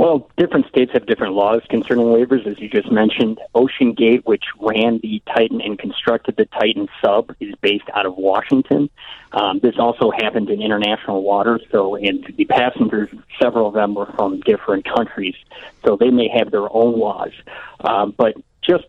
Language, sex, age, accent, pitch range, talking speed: English, male, 30-49, American, 105-120 Hz, 180 wpm